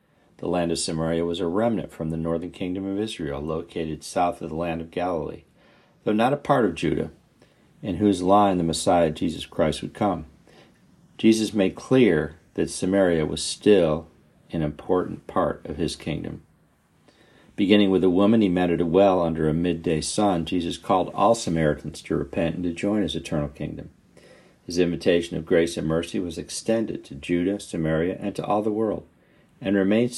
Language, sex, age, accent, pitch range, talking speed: English, male, 50-69, American, 80-105 Hz, 180 wpm